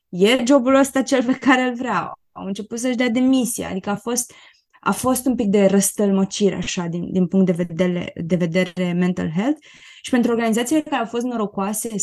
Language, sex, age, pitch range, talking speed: Romanian, female, 20-39, 185-250 Hz, 190 wpm